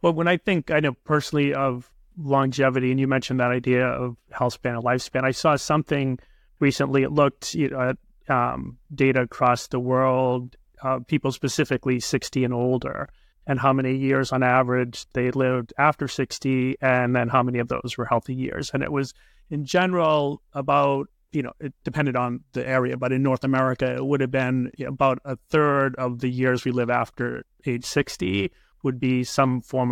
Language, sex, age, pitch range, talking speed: English, male, 30-49, 125-135 Hz, 195 wpm